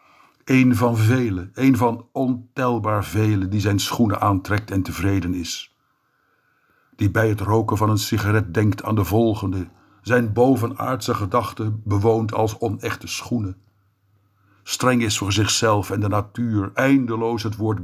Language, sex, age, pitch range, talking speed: Dutch, male, 60-79, 95-115 Hz, 140 wpm